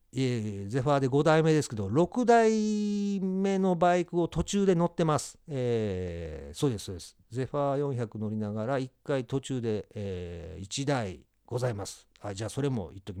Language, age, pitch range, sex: Japanese, 50-69, 95-155 Hz, male